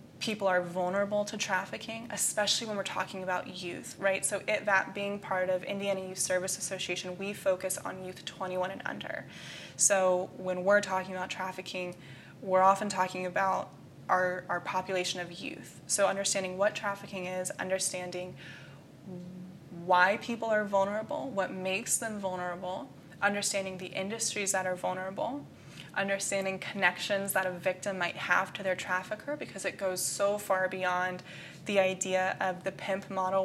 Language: English